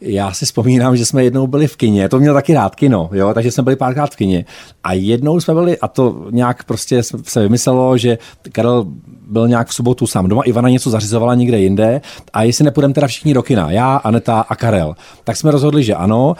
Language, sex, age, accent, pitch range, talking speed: Czech, male, 40-59, native, 115-150 Hz, 220 wpm